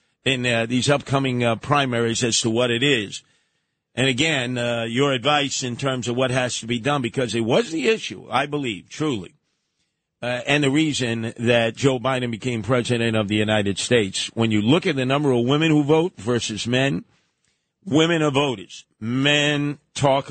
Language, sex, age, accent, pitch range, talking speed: English, male, 50-69, American, 115-145 Hz, 185 wpm